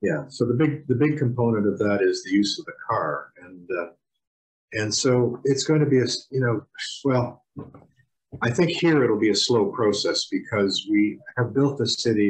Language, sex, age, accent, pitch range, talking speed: English, male, 50-69, American, 95-140 Hz, 200 wpm